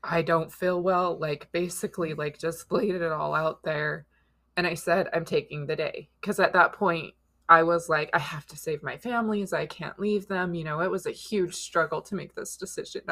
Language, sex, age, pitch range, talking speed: English, female, 20-39, 150-190 Hz, 220 wpm